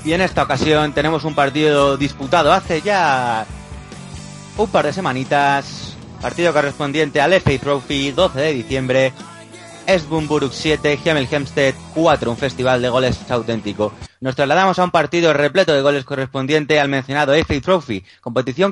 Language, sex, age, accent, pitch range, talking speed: Spanish, male, 30-49, Spanish, 130-160 Hz, 150 wpm